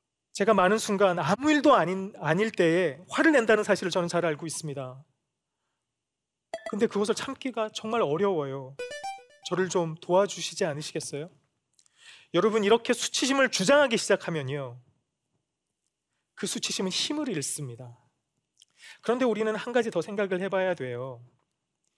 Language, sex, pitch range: Korean, male, 150-235 Hz